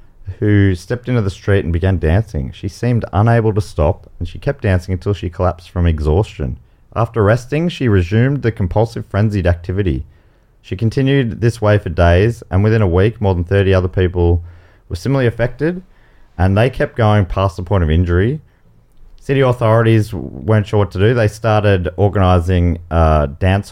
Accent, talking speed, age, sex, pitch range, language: Australian, 175 wpm, 30-49, male, 85-110 Hz, English